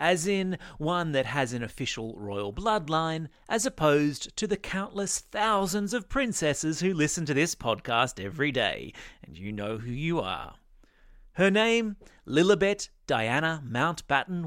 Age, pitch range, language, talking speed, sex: 40-59, 125-195 Hz, English, 145 wpm, male